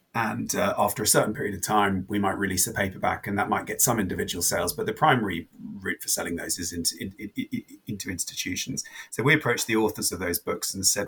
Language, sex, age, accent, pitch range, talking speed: English, male, 30-49, British, 95-110 Hz, 240 wpm